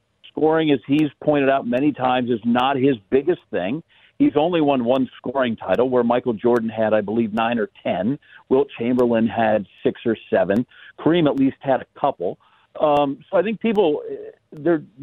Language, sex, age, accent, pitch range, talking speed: English, male, 50-69, American, 120-145 Hz, 180 wpm